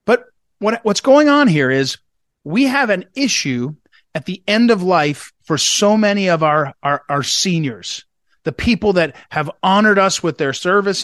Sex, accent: male, American